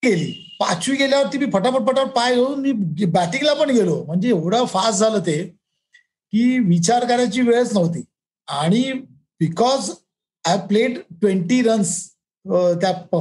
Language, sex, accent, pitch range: Marathi, male, native, 175-225 Hz